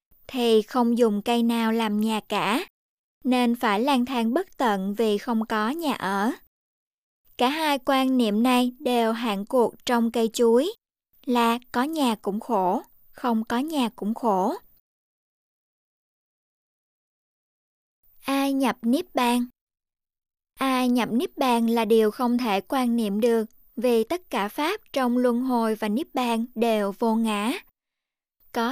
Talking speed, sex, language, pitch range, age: 145 wpm, male, Vietnamese, 225-260 Hz, 20-39